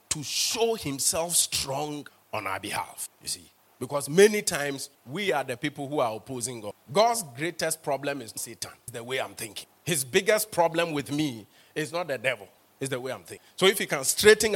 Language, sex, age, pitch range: English, male, 30-49, 145-195 Hz